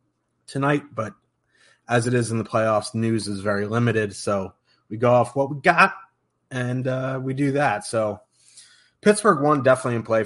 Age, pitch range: 30-49, 105-125 Hz